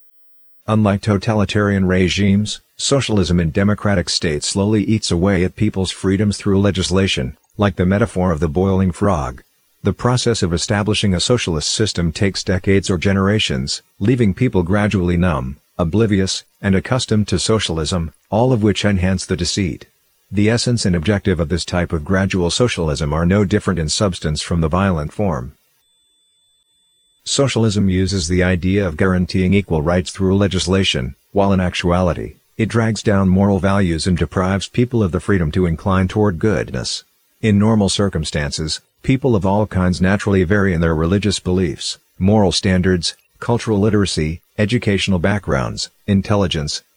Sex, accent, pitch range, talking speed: male, American, 90-105 Hz, 145 wpm